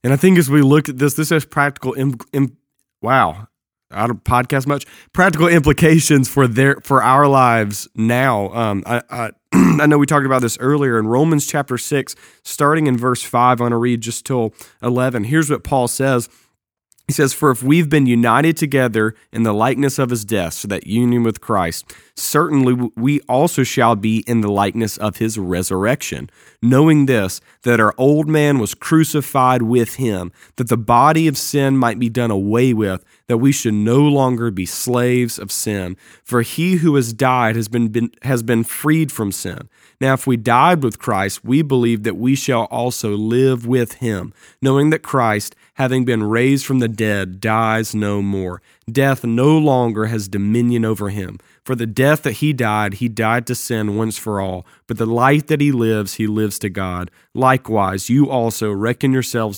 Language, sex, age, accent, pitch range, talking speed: English, male, 30-49, American, 110-135 Hz, 190 wpm